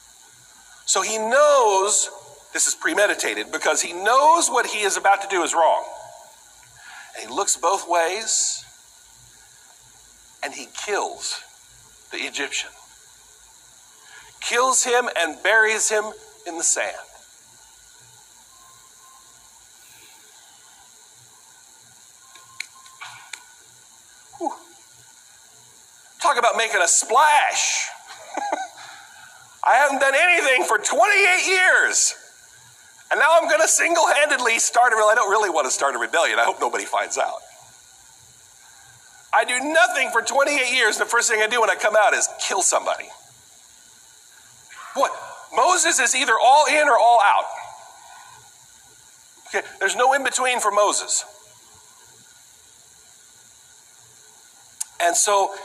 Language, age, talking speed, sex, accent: English, 50-69, 110 wpm, male, American